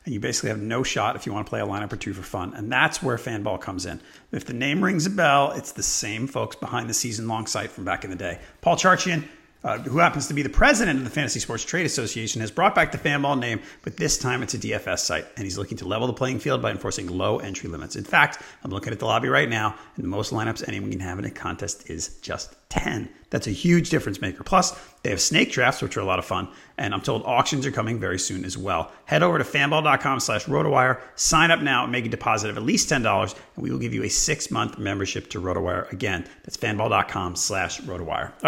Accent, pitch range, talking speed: American, 105-155 Hz, 255 wpm